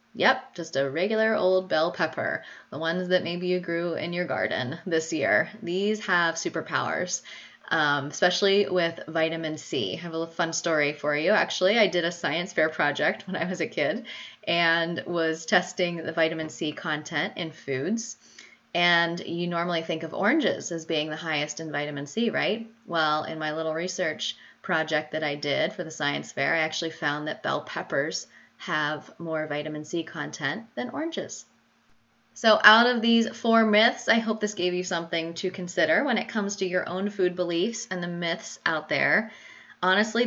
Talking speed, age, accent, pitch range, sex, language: 180 wpm, 20-39, American, 155-185 Hz, female, English